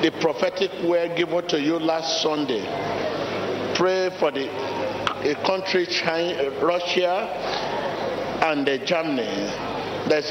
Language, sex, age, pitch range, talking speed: English, male, 50-69, 150-180 Hz, 110 wpm